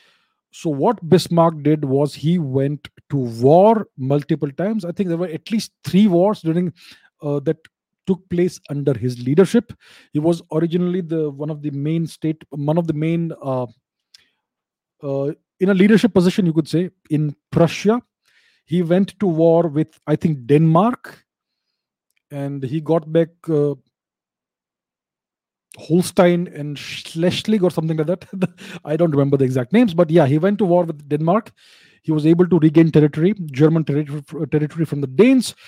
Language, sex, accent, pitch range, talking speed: English, male, Indian, 150-185 Hz, 160 wpm